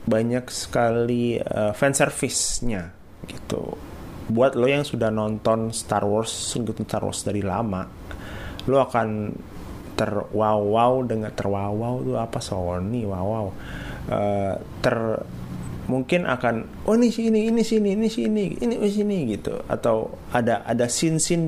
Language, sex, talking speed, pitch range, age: Indonesian, male, 125 wpm, 100-130 Hz, 30-49